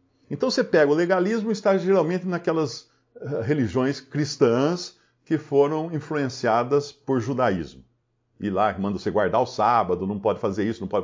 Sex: male